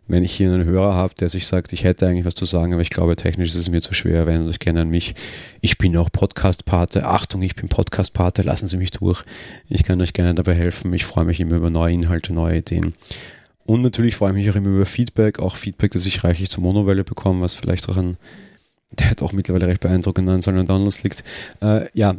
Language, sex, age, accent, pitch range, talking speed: German, male, 30-49, German, 90-100 Hz, 245 wpm